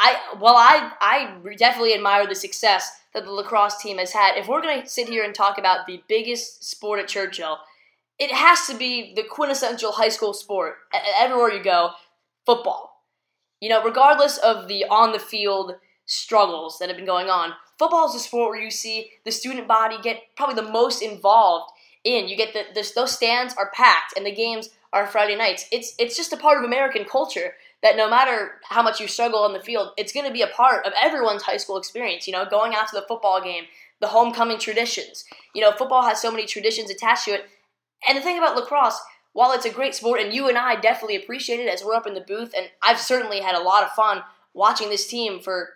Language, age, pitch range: English, 10-29, 200-245 Hz